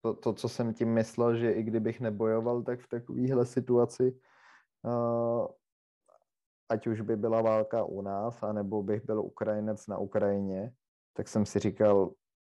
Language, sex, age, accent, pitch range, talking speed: Czech, male, 20-39, native, 100-115 Hz, 150 wpm